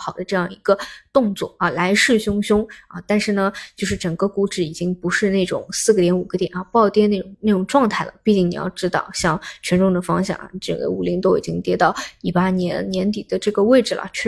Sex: female